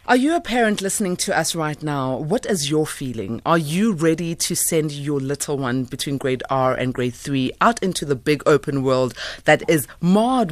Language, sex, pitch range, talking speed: English, female, 135-180 Hz, 205 wpm